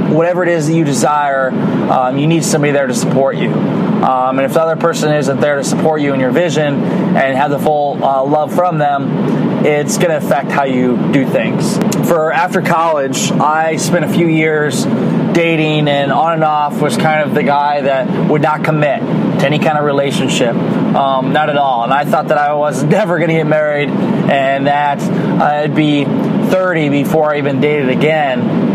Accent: American